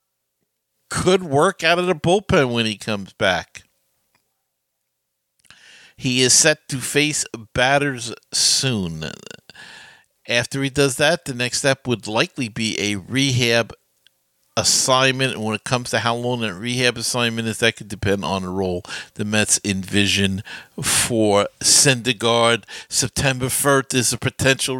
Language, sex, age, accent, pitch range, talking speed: English, male, 50-69, American, 115-140 Hz, 140 wpm